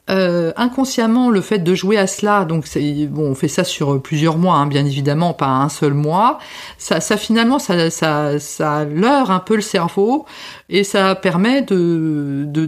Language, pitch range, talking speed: French, 160-210 Hz, 190 wpm